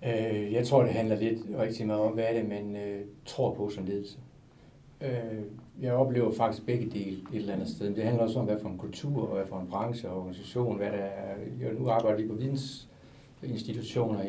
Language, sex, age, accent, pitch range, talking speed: Danish, male, 60-79, native, 105-130 Hz, 195 wpm